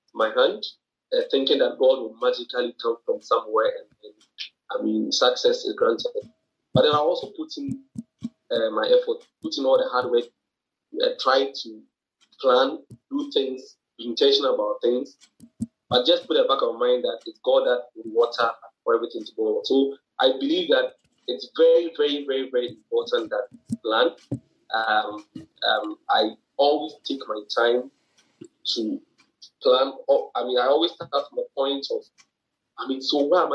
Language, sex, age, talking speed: English, male, 30-49, 170 wpm